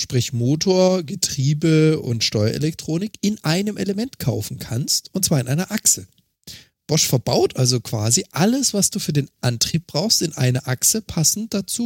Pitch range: 120-185 Hz